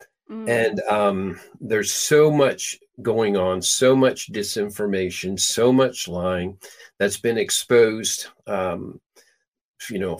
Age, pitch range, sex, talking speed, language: 50-69, 100-145 Hz, male, 110 wpm, English